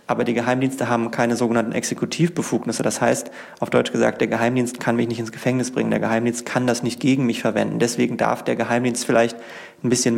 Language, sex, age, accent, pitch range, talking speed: German, male, 30-49, German, 115-135 Hz, 205 wpm